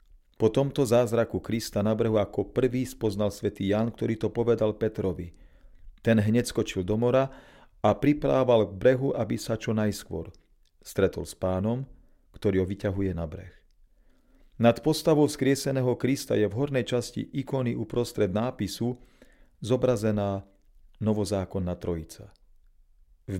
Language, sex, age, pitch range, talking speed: Slovak, male, 40-59, 95-120 Hz, 130 wpm